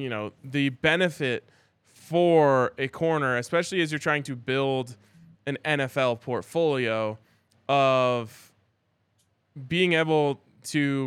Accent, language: American, English